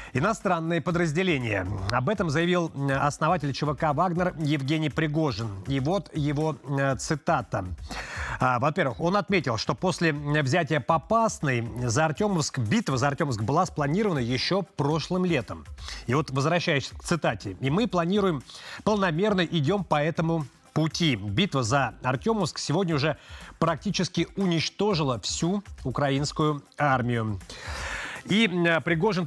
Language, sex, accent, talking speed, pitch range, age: Russian, male, native, 115 wpm, 135-185 Hz, 30-49